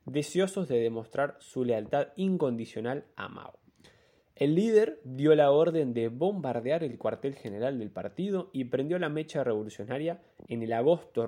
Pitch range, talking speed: 120-170 Hz, 150 wpm